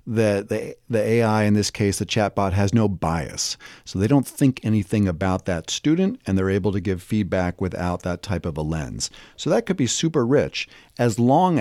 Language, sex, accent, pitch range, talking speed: English, male, American, 95-120 Hz, 200 wpm